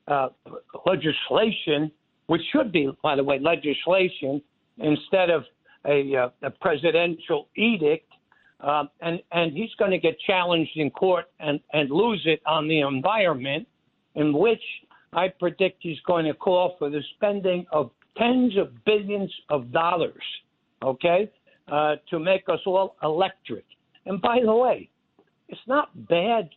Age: 60-79